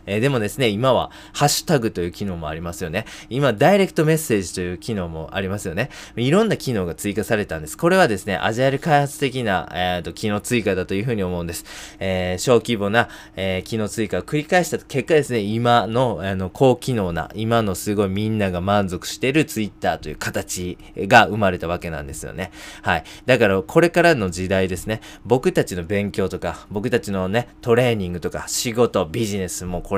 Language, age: Japanese, 20-39